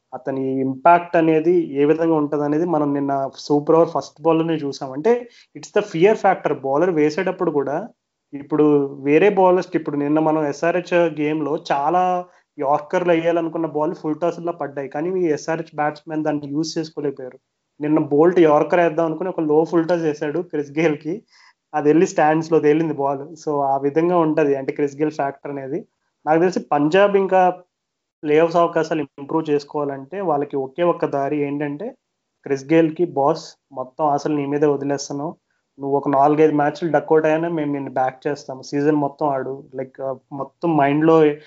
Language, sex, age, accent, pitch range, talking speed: Telugu, male, 30-49, native, 145-165 Hz, 160 wpm